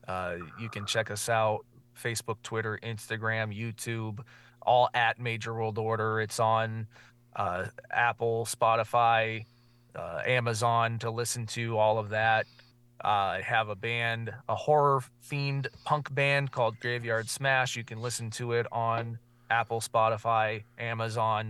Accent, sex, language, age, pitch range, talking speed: American, male, English, 20-39, 110-120 Hz, 135 wpm